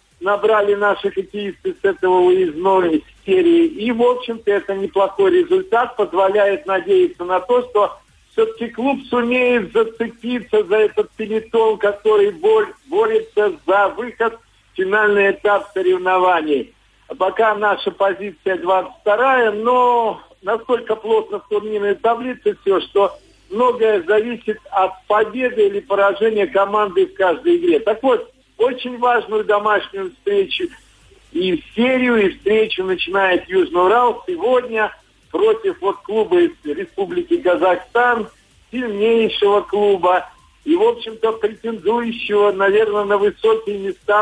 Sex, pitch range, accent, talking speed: male, 205-285 Hz, native, 120 wpm